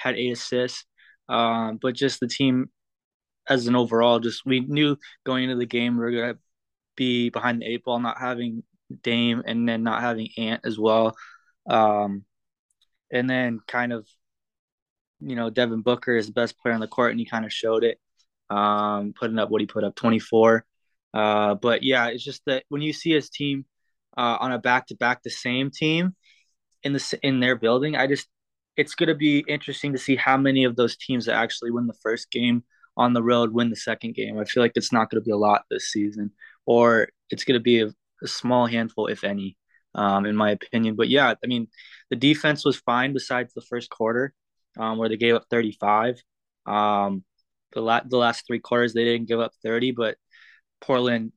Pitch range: 110-125 Hz